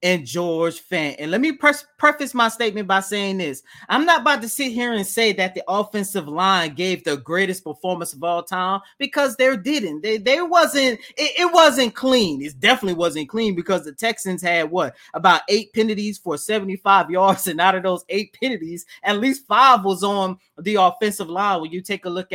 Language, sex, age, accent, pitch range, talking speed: English, male, 30-49, American, 175-230 Hz, 200 wpm